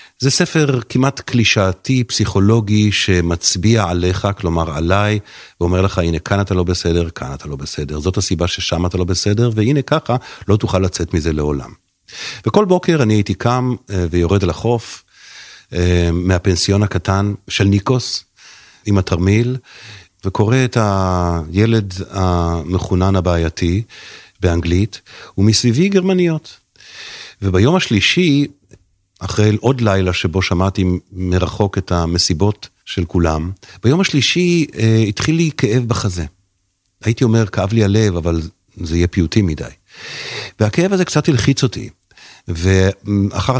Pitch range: 90-115 Hz